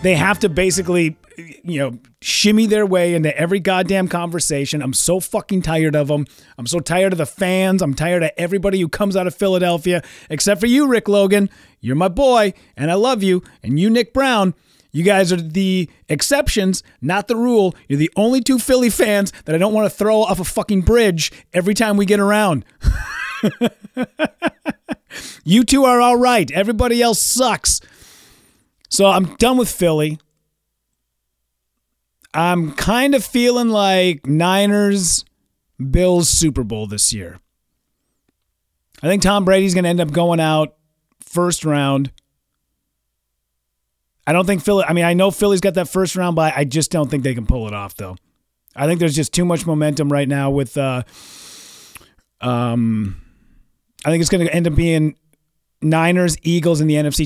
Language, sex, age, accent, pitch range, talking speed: English, male, 30-49, American, 150-200 Hz, 170 wpm